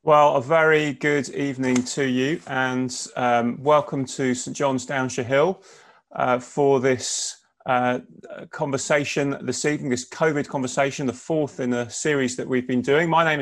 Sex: male